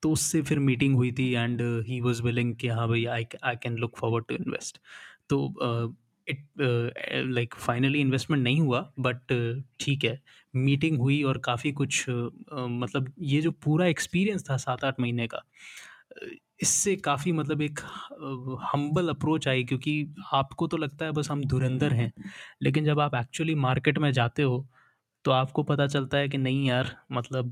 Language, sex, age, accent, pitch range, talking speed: Hindi, male, 20-39, native, 125-150 Hz, 180 wpm